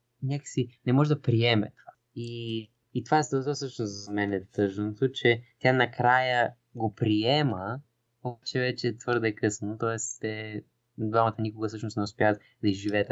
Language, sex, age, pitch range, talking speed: Bulgarian, male, 20-39, 105-125 Hz, 145 wpm